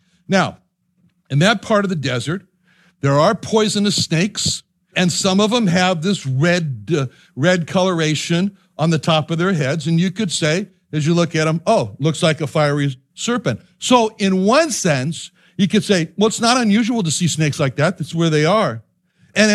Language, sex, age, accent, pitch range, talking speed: English, male, 60-79, American, 155-205 Hz, 195 wpm